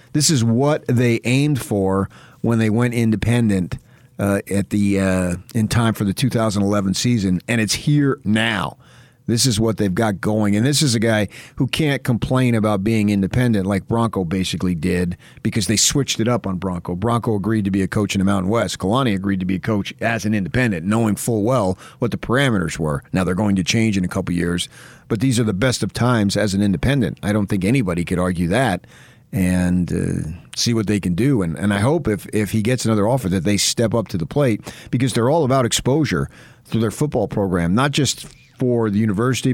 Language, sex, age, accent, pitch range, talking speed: English, male, 40-59, American, 95-120 Hz, 215 wpm